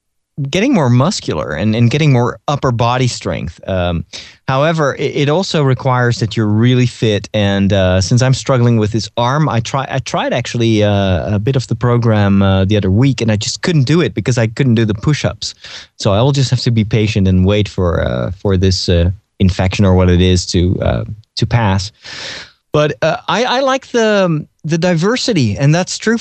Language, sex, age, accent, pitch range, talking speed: English, male, 30-49, American, 110-150 Hz, 205 wpm